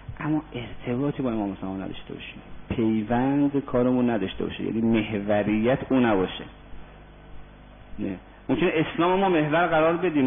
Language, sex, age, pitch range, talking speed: Persian, male, 40-59, 110-140 Hz, 125 wpm